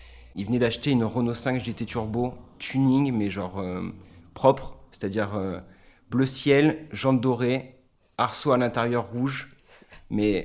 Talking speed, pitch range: 140 wpm, 105-130 Hz